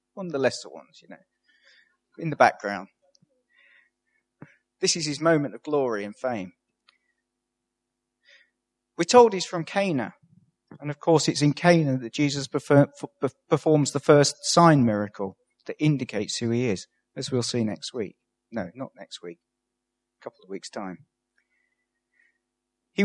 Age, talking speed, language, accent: 40-59, 145 wpm, English, British